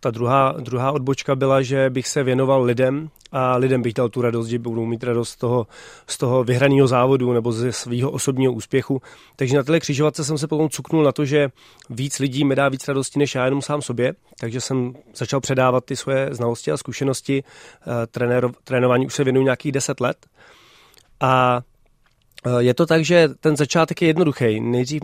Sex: male